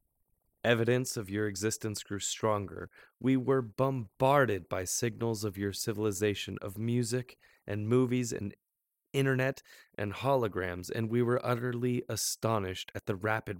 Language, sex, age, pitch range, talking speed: English, male, 20-39, 100-120 Hz, 130 wpm